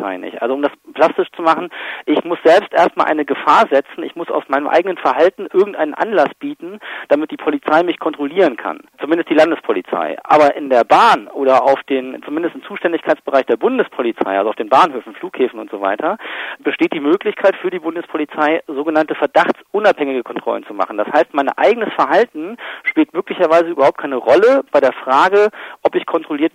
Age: 40-59